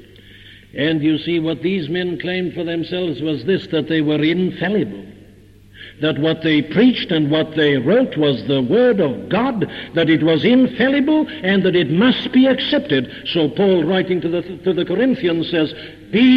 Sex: male